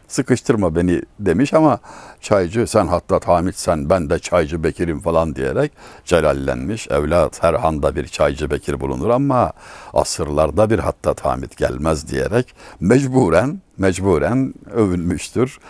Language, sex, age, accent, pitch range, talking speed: Turkish, male, 60-79, native, 85-120 Hz, 120 wpm